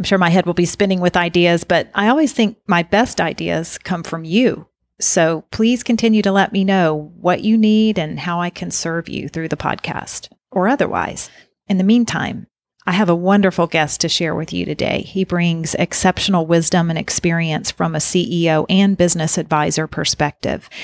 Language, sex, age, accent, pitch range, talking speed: English, female, 40-59, American, 165-195 Hz, 190 wpm